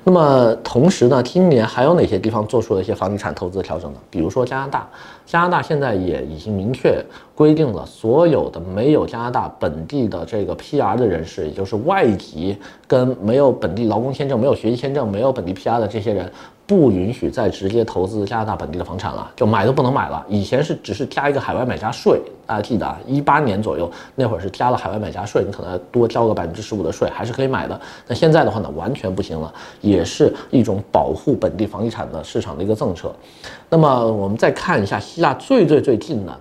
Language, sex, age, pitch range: Chinese, male, 30-49, 100-135 Hz